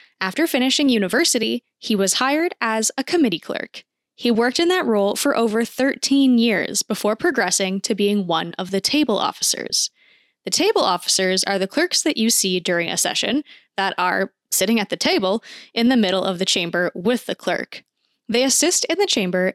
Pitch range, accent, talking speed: 195-275 Hz, American, 185 wpm